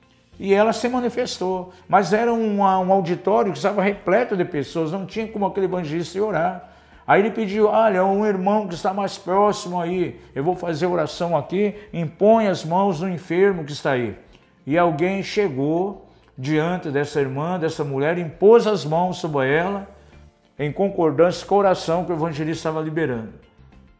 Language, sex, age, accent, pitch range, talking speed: Portuguese, male, 50-69, Brazilian, 150-195 Hz, 170 wpm